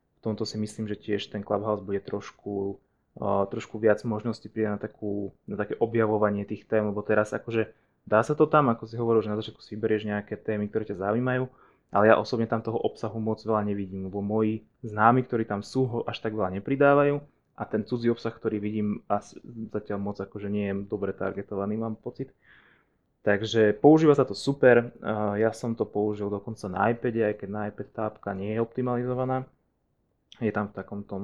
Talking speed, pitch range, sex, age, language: 200 wpm, 105-120 Hz, male, 20-39, Slovak